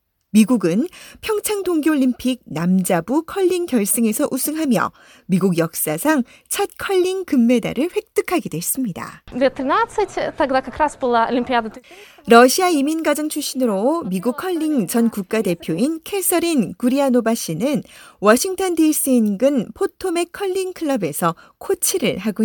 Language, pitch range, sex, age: Korean, 215-315 Hz, female, 40-59